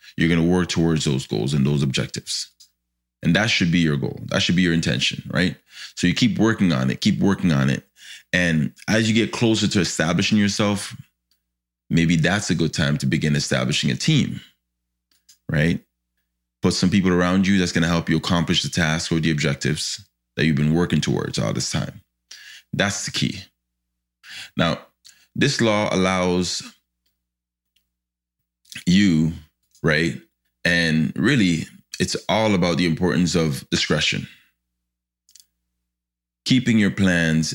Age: 20-39